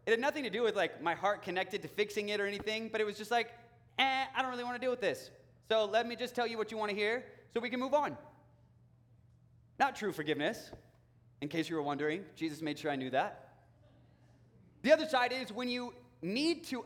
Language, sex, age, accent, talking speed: English, male, 20-39, American, 240 wpm